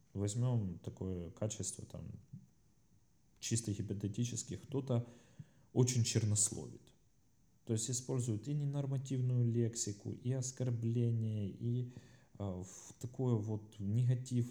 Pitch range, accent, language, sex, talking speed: 100-125 Hz, native, Russian, male, 90 wpm